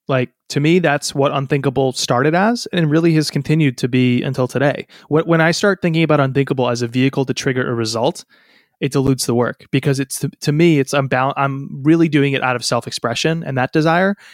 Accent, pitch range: American, 130-160 Hz